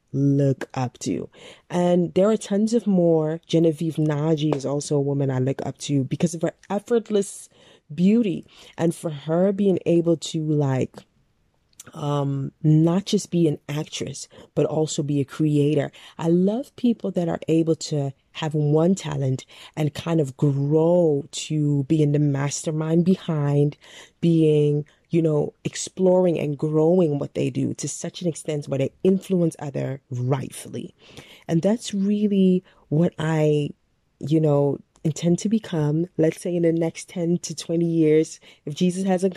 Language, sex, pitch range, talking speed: English, female, 145-170 Hz, 155 wpm